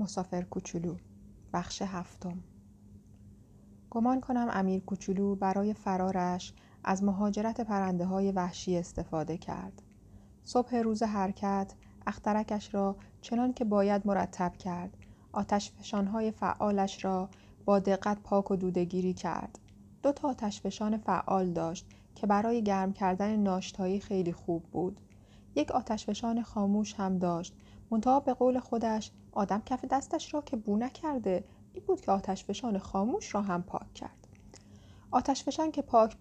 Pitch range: 180-225 Hz